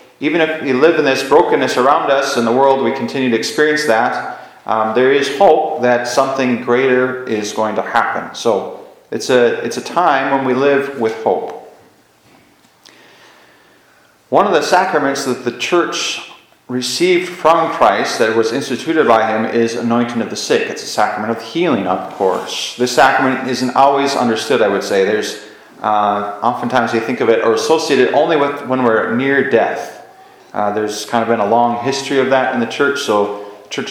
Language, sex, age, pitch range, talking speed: English, male, 30-49, 110-140 Hz, 185 wpm